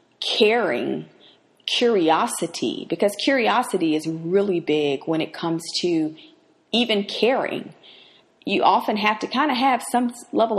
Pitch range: 170-240 Hz